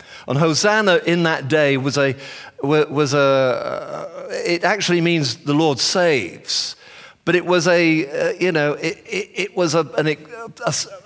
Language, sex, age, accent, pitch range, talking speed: English, male, 50-69, British, 135-175 Hz, 150 wpm